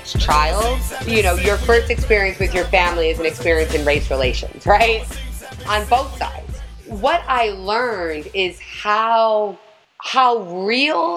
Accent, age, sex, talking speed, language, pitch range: American, 30-49, female, 140 wpm, English, 180-245 Hz